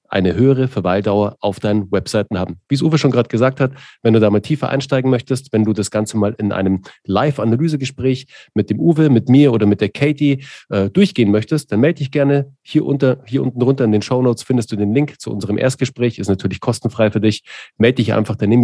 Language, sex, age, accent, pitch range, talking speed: German, male, 40-59, German, 105-130 Hz, 230 wpm